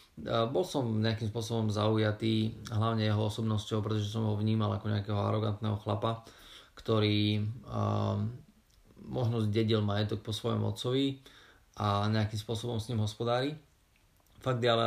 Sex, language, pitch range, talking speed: male, Slovak, 105-115 Hz, 130 wpm